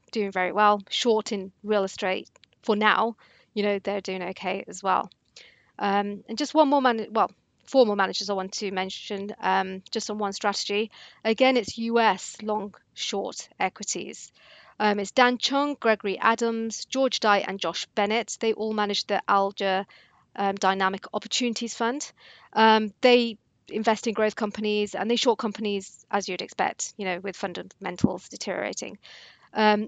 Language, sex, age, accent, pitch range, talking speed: English, female, 40-59, British, 200-230 Hz, 160 wpm